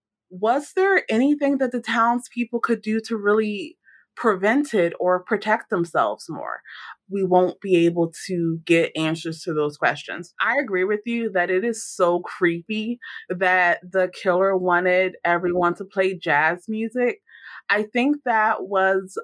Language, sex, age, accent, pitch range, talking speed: English, female, 20-39, American, 180-225 Hz, 150 wpm